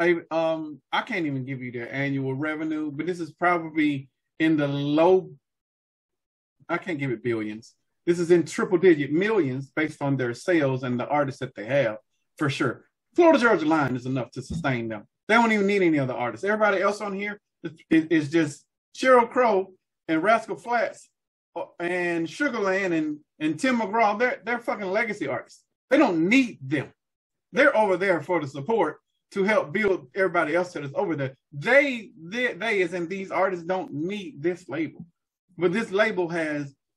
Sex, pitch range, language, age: male, 145-205 Hz, English, 30-49